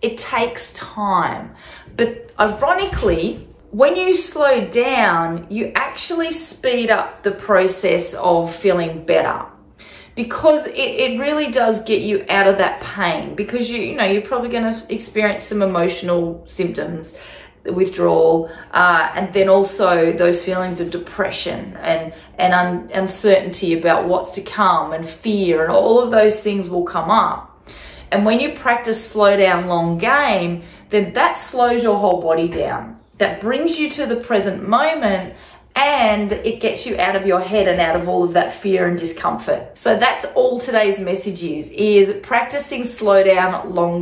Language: English